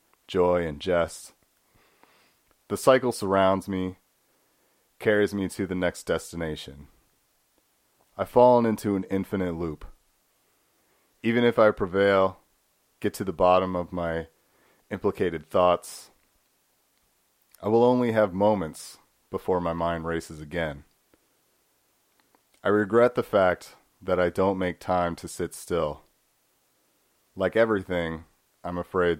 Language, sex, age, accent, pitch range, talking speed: English, male, 30-49, American, 85-100 Hz, 115 wpm